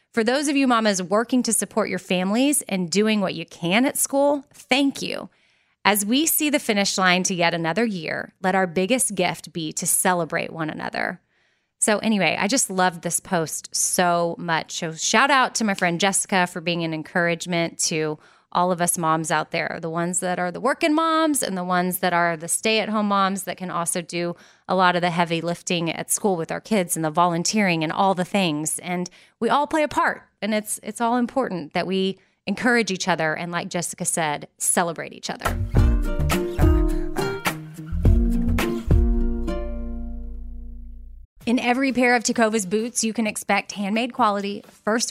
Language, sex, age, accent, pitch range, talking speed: English, female, 20-39, American, 175-225 Hz, 180 wpm